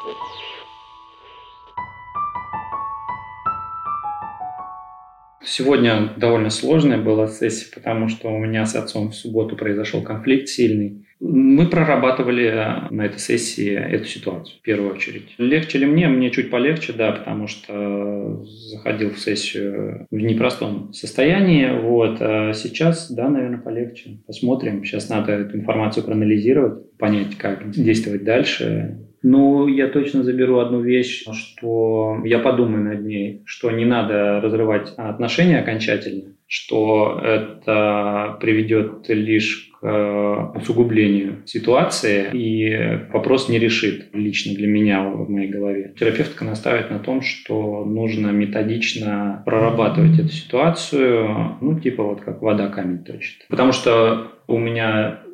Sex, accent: male, native